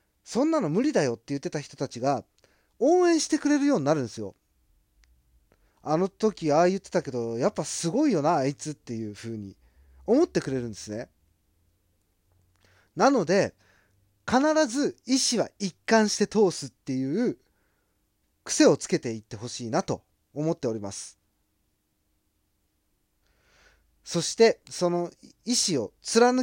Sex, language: male, Japanese